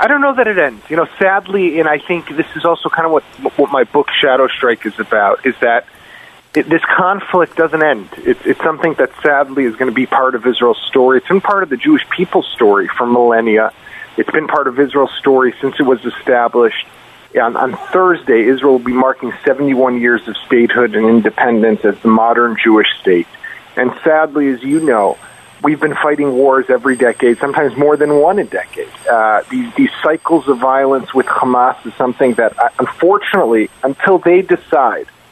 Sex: male